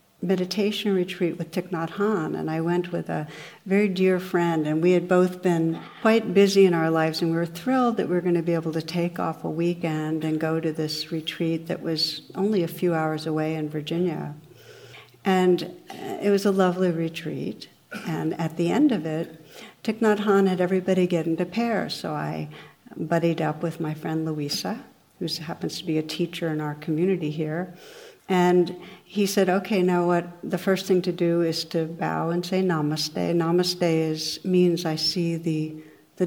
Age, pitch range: 60-79, 160-185 Hz